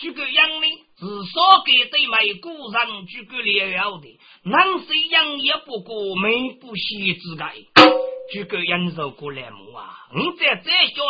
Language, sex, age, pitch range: Chinese, male, 50-69, 190-295 Hz